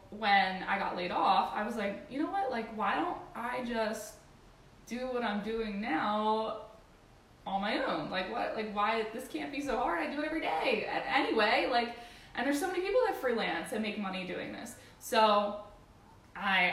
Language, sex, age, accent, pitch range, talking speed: English, female, 10-29, American, 195-235 Hz, 195 wpm